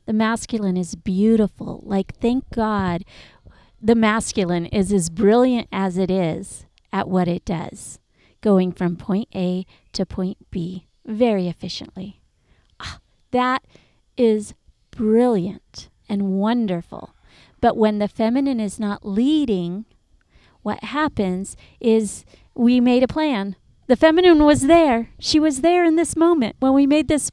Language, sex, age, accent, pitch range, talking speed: English, female, 40-59, American, 215-285 Hz, 135 wpm